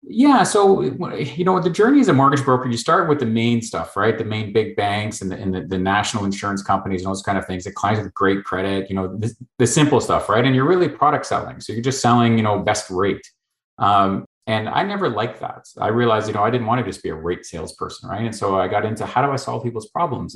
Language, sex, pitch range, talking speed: English, male, 100-120 Hz, 260 wpm